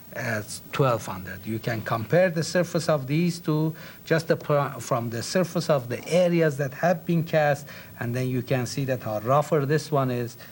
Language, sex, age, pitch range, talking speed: English, male, 60-79, 110-155 Hz, 185 wpm